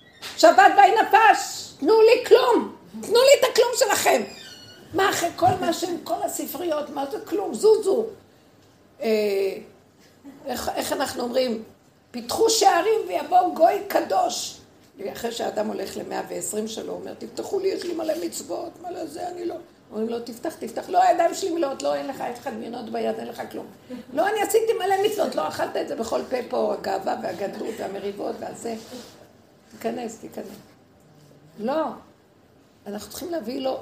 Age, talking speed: 60-79, 155 wpm